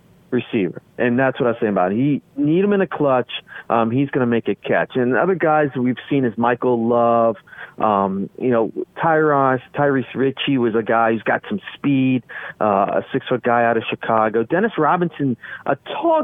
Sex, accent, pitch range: male, American, 115-150 Hz